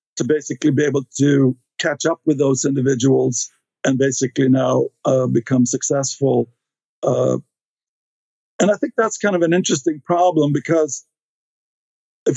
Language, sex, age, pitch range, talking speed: English, male, 50-69, 130-155 Hz, 135 wpm